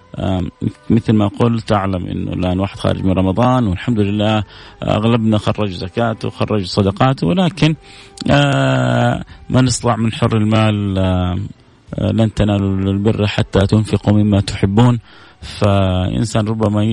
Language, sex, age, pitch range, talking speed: Arabic, male, 30-49, 100-120 Hz, 115 wpm